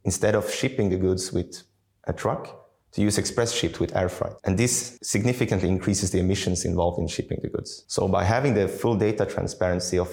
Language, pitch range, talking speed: Danish, 90-105 Hz, 200 wpm